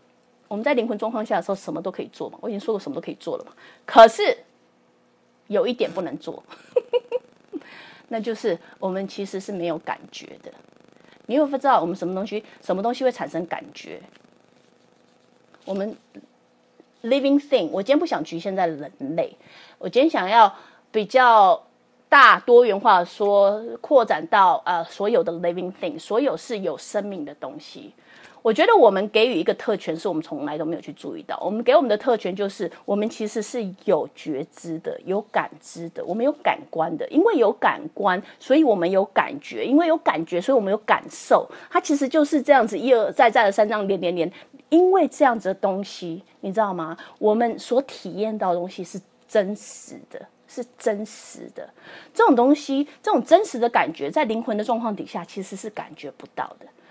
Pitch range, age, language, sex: 195-275 Hz, 30-49, English, female